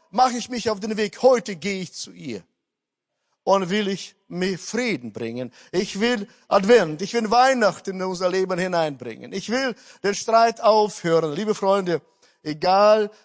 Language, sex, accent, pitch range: German, male, German, 165-230 Hz